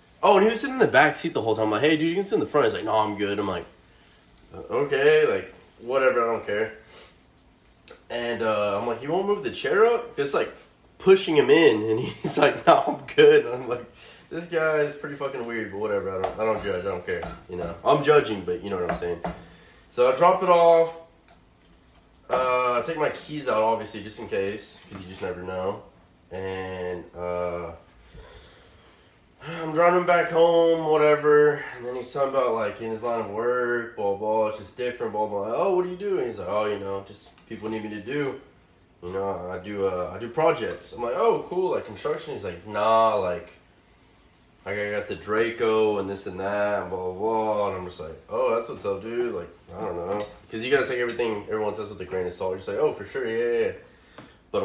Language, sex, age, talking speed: English, male, 20-39, 235 wpm